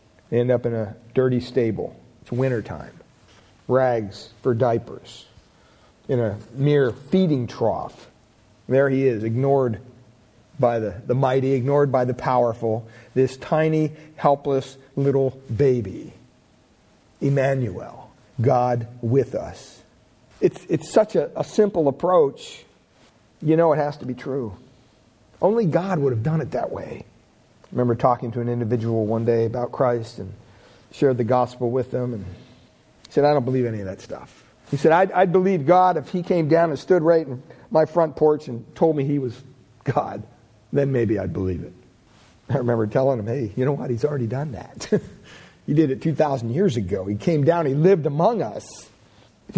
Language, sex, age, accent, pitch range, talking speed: English, male, 50-69, American, 115-150 Hz, 170 wpm